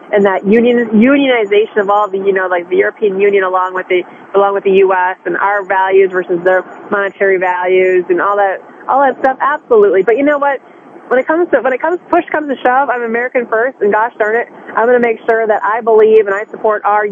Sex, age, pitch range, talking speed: female, 30-49, 190-250 Hz, 235 wpm